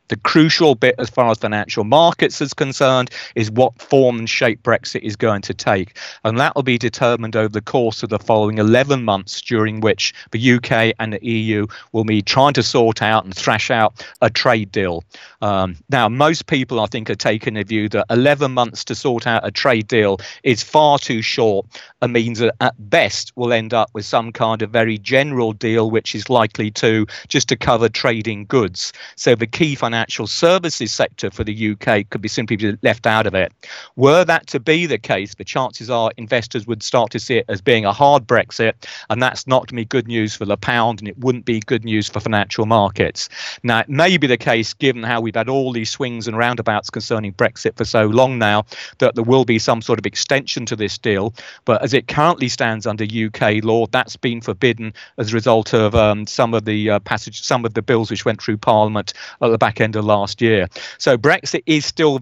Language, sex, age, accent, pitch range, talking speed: English, male, 40-59, British, 110-130 Hz, 220 wpm